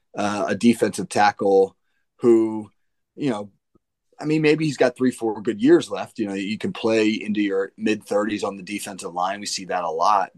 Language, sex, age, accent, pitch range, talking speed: English, male, 30-49, American, 100-120 Hz, 200 wpm